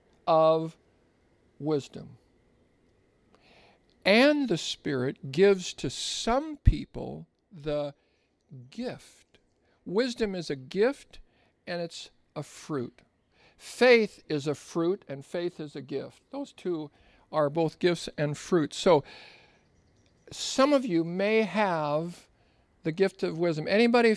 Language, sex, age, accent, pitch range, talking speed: English, male, 50-69, American, 150-205 Hz, 115 wpm